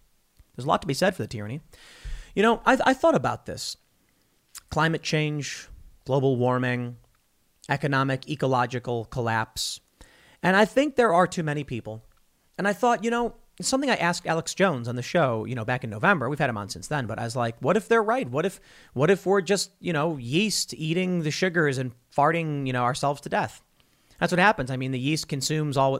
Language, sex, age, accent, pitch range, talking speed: English, male, 30-49, American, 130-185 Hz, 210 wpm